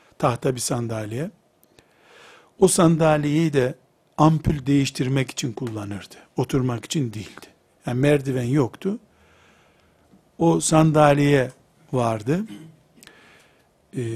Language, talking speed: Turkish, 85 wpm